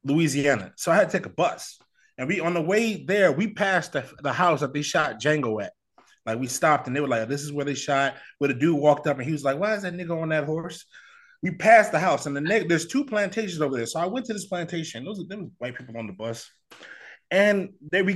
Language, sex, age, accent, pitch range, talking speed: English, male, 20-39, American, 135-190 Hz, 265 wpm